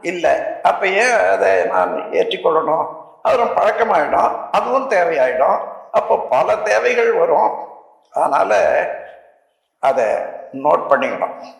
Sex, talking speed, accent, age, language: male, 95 wpm, native, 60-79, Tamil